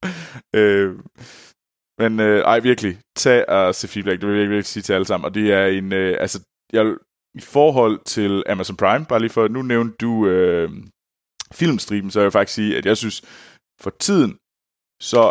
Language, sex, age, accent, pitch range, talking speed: Danish, male, 20-39, native, 95-115 Hz, 185 wpm